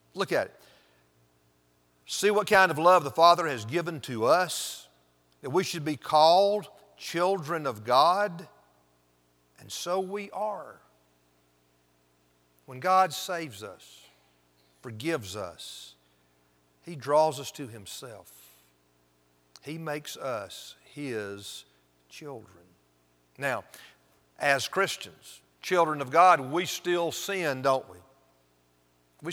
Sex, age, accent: male, 50-69, American